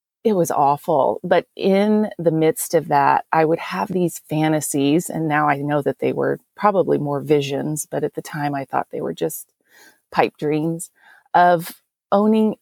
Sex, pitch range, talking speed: female, 155-185 Hz, 175 wpm